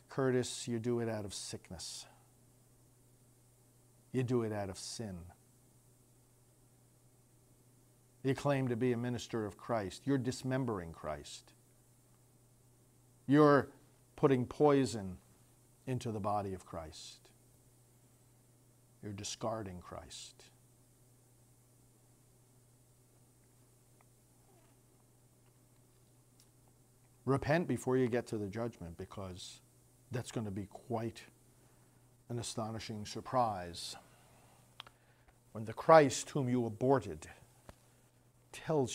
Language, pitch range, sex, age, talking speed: English, 120-125 Hz, male, 50-69, 90 wpm